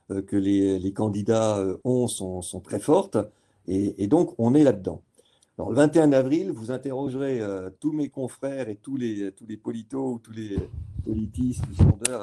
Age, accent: 50-69, French